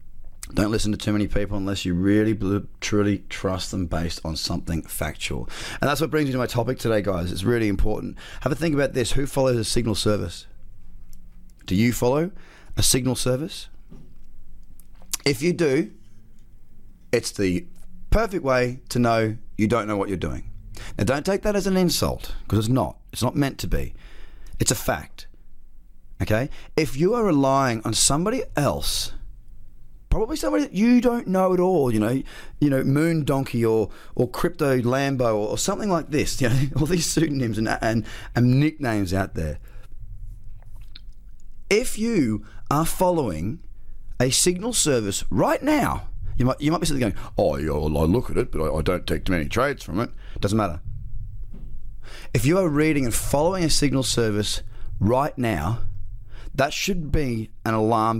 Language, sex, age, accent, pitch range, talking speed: English, male, 30-49, Australian, 100-135 Hz, 175 wpm